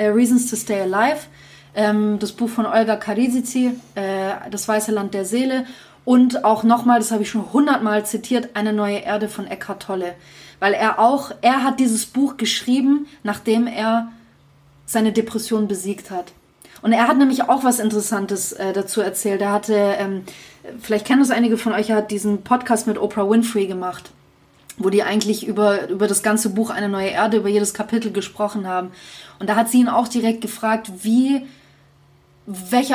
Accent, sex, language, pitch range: German, female, German, 210-240 Hz